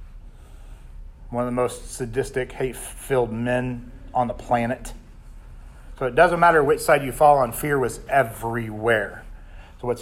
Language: English